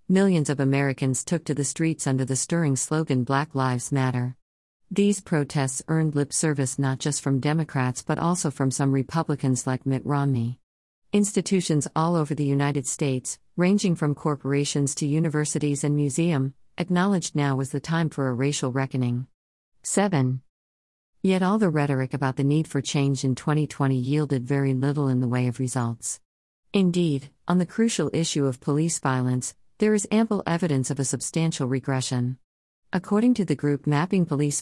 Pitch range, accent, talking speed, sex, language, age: 130-165 Hz, American, 165 wpm, female, English, 50-69